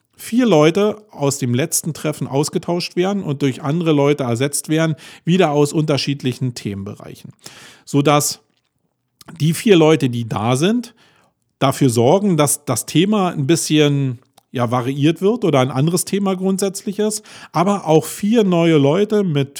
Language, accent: German, German